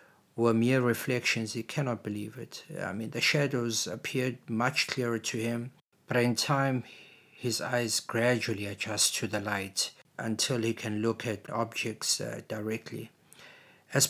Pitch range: 110-125 Hz